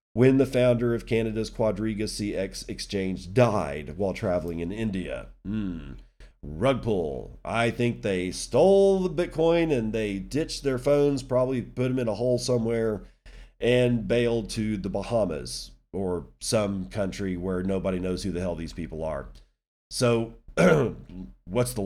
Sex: male